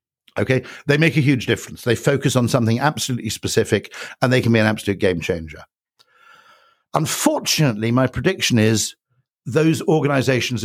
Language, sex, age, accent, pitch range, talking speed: English, male, 60-79, British, 110-145 Hz, 145 wpm